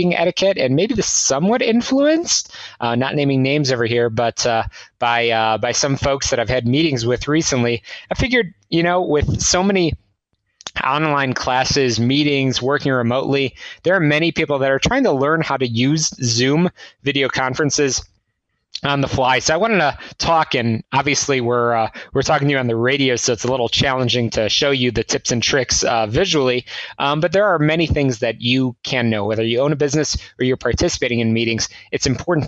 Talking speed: 200 wpm